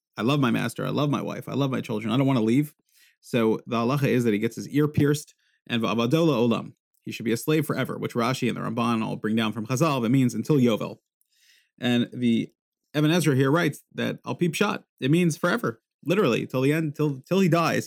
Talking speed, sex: 235 wpm, male